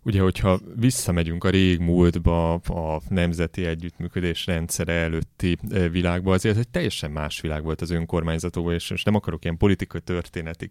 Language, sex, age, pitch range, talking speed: Hungarian, male, 30-49, 80-95 Hz, 150 wpm